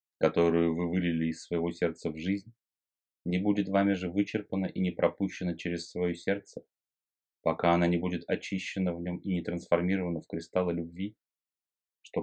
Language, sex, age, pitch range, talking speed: Russian, male, 30-49, 80-95 Hz, 160 wpm